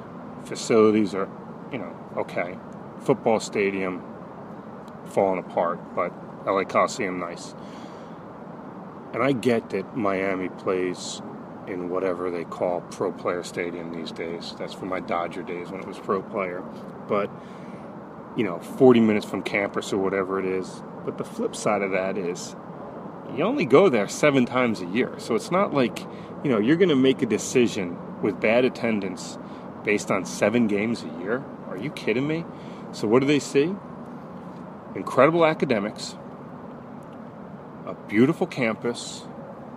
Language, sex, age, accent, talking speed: English, male, 30-49, American, 145 wpm